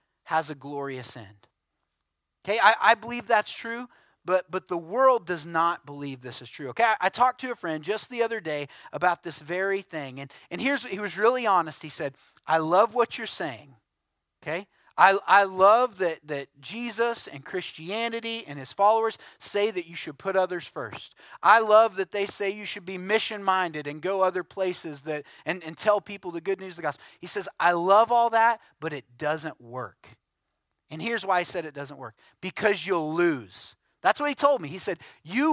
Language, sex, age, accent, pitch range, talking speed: English, male, 30-49, American, 160-230 Hz, 205 wpm